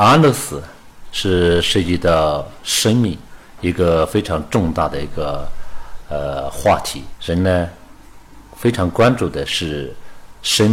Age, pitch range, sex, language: 50-69, 80-100 Hz, male, Chinese